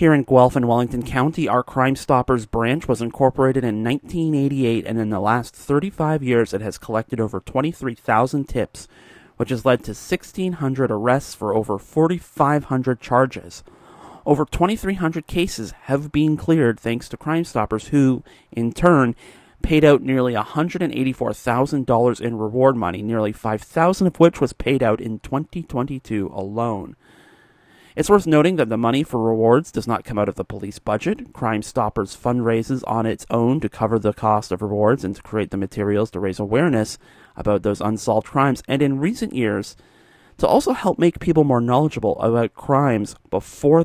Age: 30-49